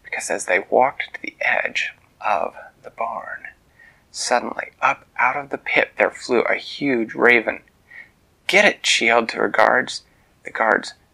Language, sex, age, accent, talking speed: English, male, 30-49, American, 155 wpm